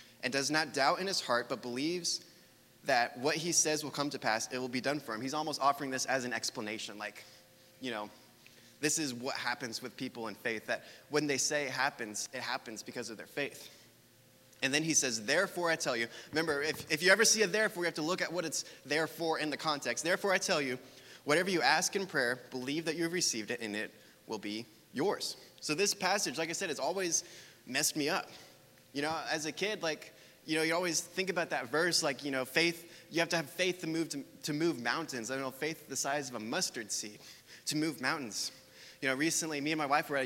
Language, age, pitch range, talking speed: English, 20-39, 130-170 Hz, 240 wpm